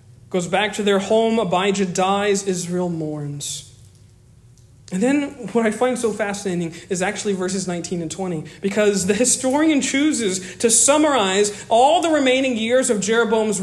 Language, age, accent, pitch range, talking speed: English, 40-59, American, 180-255 Hz, 150 wpm